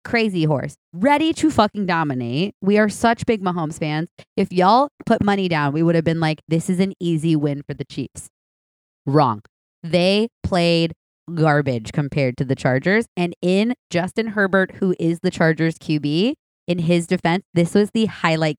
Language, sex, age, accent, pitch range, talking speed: English, female, 20-39, American, 150-200 Hz, 175 wpm